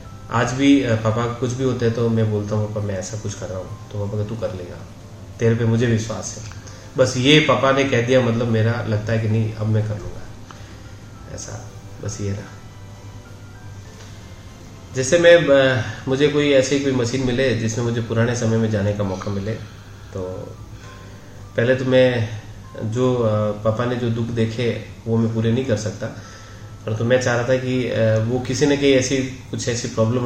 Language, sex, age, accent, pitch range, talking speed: Hindi, male, 20-39, native, 105-120 Hz, 195 wpm